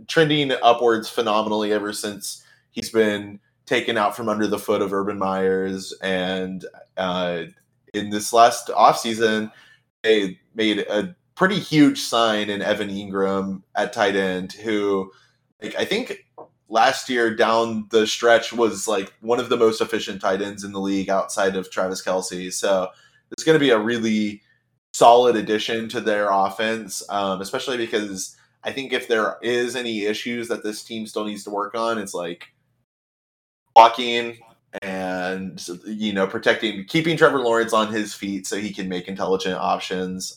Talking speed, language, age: 160 wpm, English, 20-39